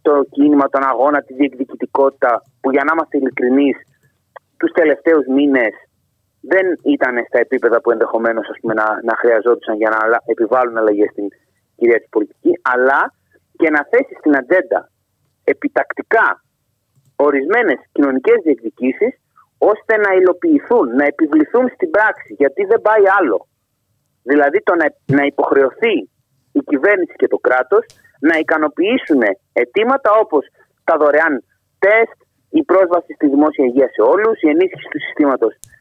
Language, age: Greek, 30-49